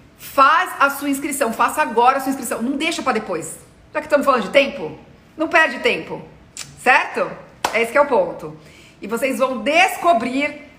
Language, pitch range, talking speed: Portuguese, 230-280 Hz, 185 wpm